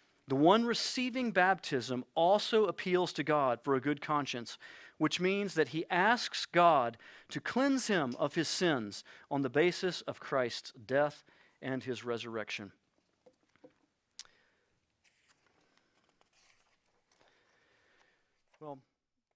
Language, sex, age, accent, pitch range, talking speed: English, male, 40-59, American, 130-175 Hz, 105 wpm